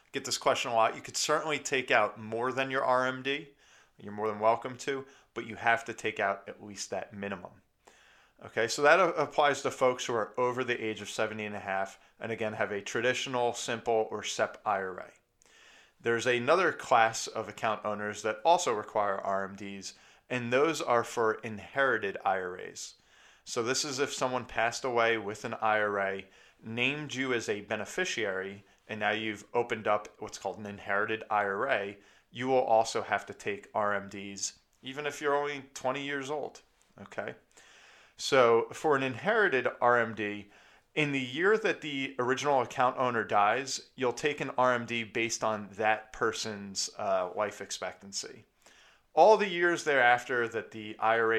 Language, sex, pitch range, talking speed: English, male, 105-130 Hz, 165 wpm